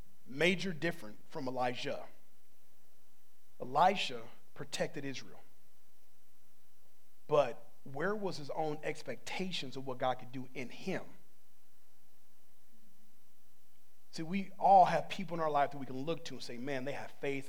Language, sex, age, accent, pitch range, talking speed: English, male, 40-59, American, 115-190 Hz, 135 wpm